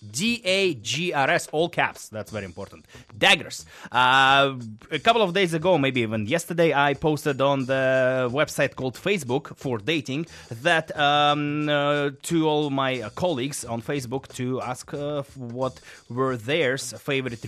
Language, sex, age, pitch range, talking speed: English, male, 20-39, 115-160 Hz, 160 wpm